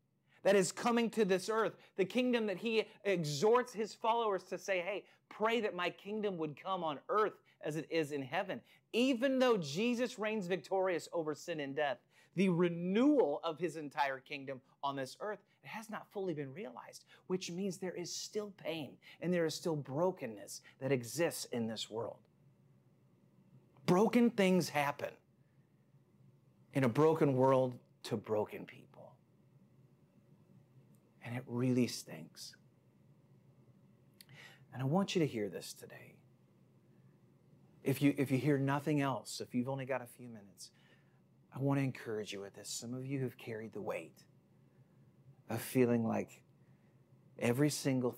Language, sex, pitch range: English, male, 125-190 Hz